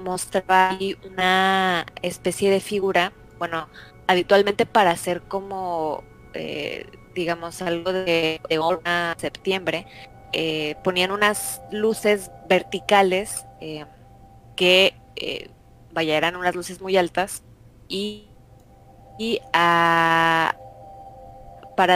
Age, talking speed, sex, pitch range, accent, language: 20-39, 100 wpm, female, 130-185 Hz, Mexican, Spanish